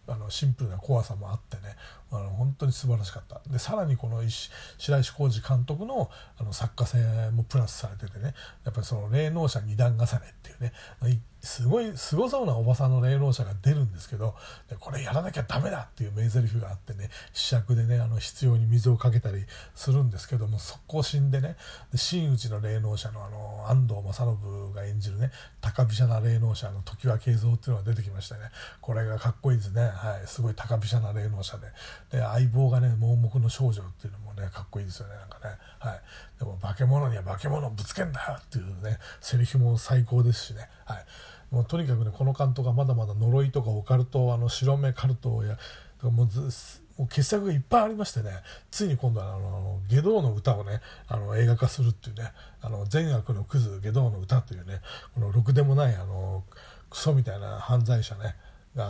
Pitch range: 105-130 Hz